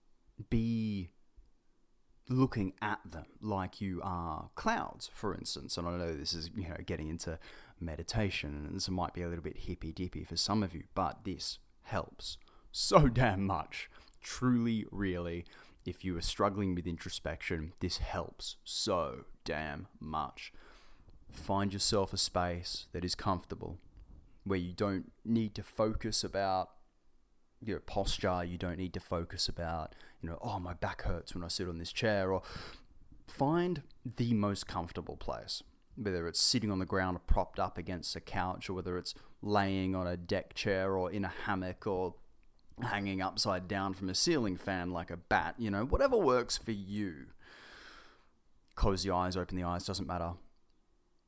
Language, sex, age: English, male, 20-39